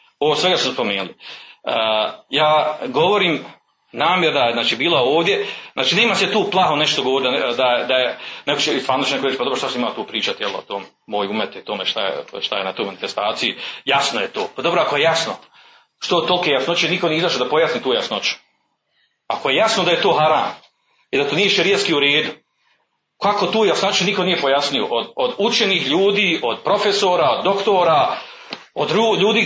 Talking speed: 185 wpm